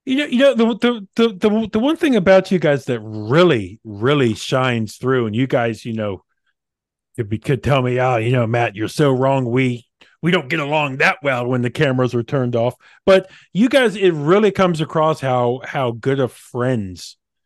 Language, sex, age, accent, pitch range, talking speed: English, male, 40-59, American, 125-195 Hz, 210 wpm